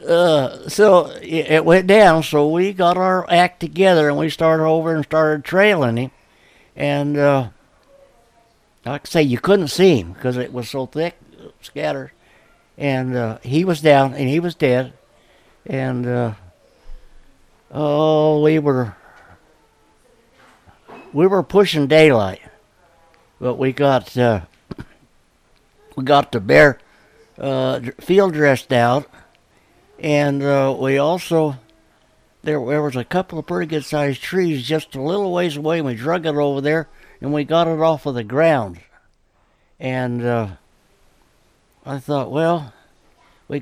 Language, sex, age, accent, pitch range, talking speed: English, male, 60-79, American, 130-165 Hz, 140 wpm